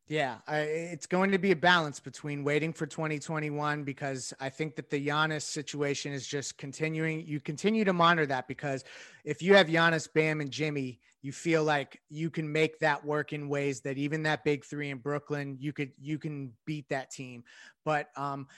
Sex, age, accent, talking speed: male, 30-49, American, 195 wpm